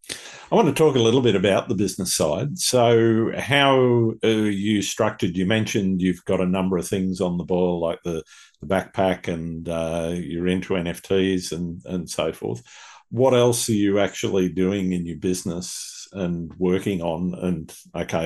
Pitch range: 90-100 Hz